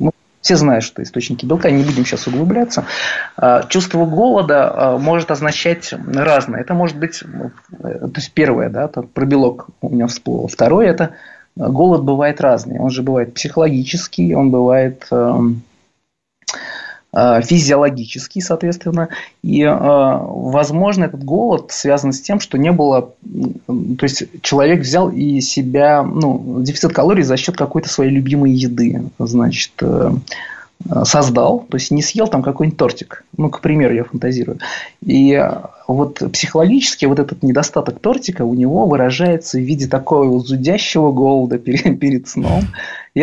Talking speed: 135 wpm